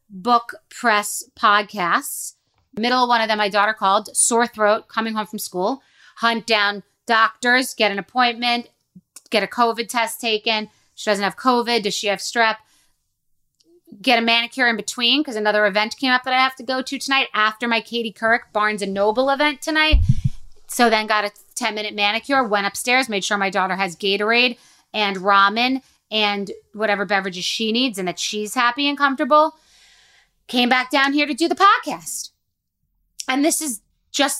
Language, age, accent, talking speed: English, 30-49, American, 180 wpm